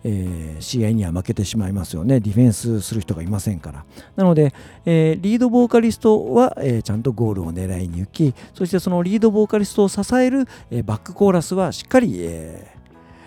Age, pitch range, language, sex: 50-69, 95-155 Hz, Japanese, male